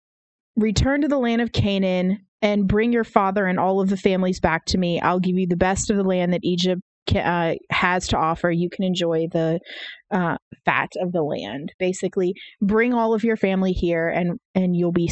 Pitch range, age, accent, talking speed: 180-210 Hz, 20-39, American, 205 wpm